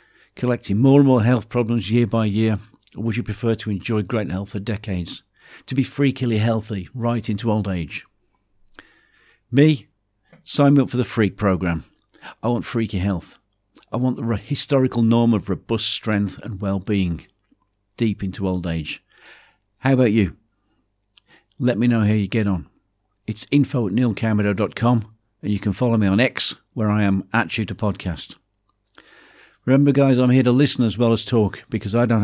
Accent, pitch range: British, 100-120 Hz